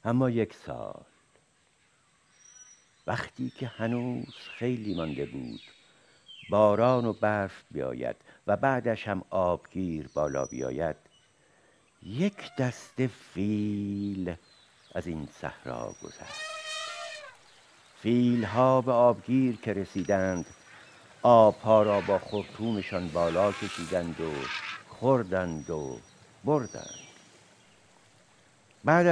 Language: Persian